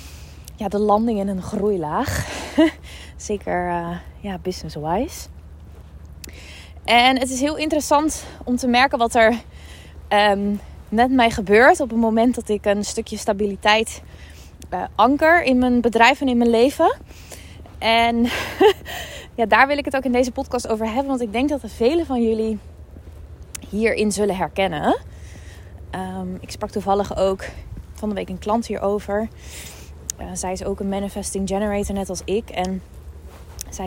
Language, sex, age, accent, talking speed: Dutch, female, 20-39, Dutch, 150 wpm